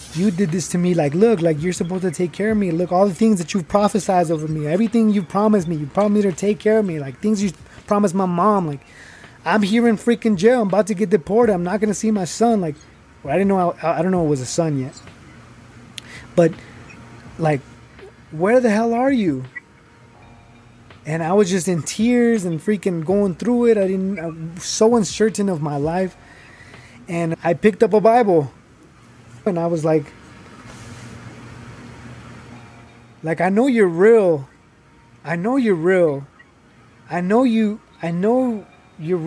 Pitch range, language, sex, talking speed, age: 150-215 Hz, English, male, 190 wpm, 20-39